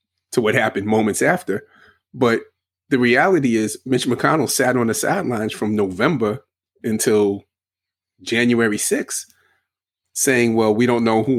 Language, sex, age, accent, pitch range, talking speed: English, male, 30-49, American, 100-120 Hz, 135 wpm